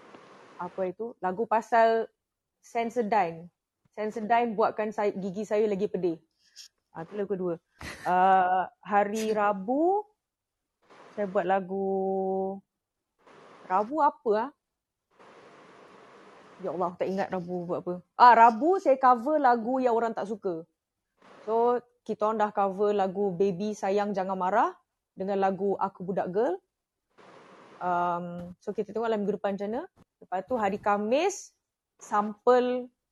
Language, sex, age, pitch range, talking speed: Malay, female, 20-39, 195-245 Hz, 125 wpm